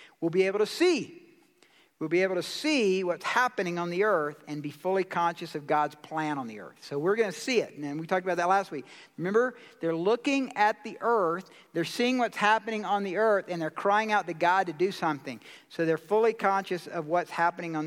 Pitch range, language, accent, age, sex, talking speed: 155-210 Hz, English, American, 50-69, male, 230 wpm